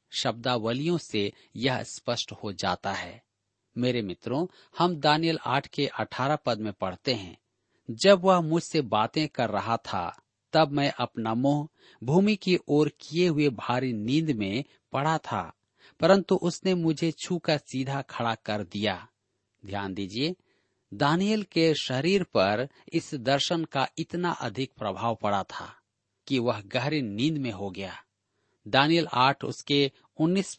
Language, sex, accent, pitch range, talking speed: Hindi, male, native, 110-160 Hz, 145 wpm